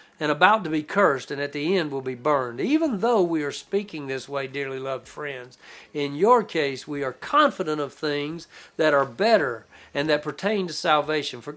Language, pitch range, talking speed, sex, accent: English, 145-210 Hz, 200 wpm, male, American